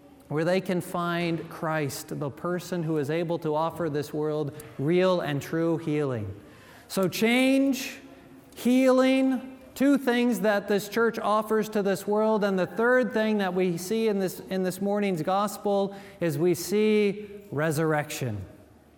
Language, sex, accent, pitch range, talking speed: English, male, American, 170-225 Hz, 145 wpm